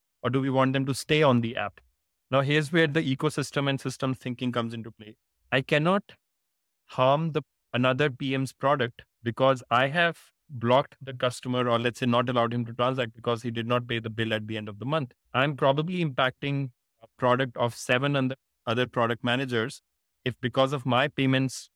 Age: 30-49